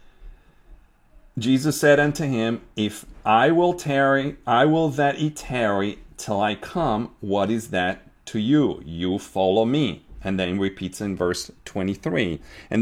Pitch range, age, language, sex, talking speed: 100-135 Hz, 40-59, English, male, 145 wpm